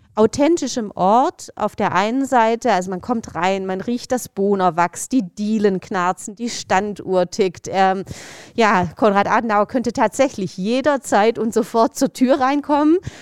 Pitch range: 195-245 Hz